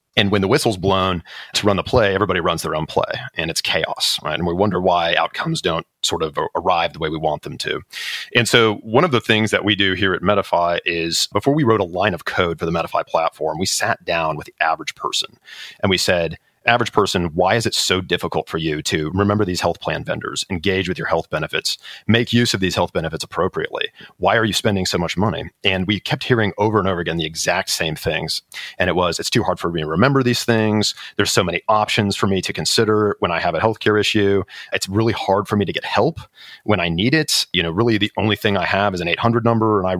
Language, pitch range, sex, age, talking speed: English, 85-110 Hz, male, 40-59, 250 wpm